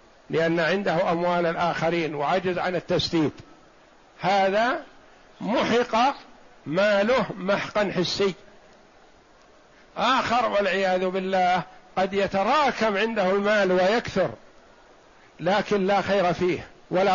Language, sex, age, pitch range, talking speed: Arabic, male, 50-69, 185-220 Hz, 90 wpm